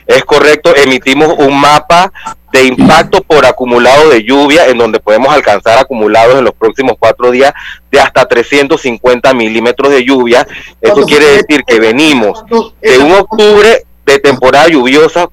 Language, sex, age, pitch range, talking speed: Spanish, male, 30-49, 125-155 Hz, 150 wpm